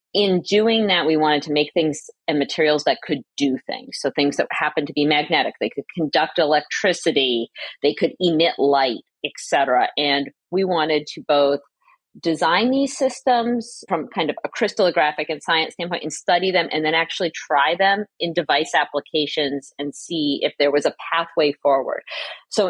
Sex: female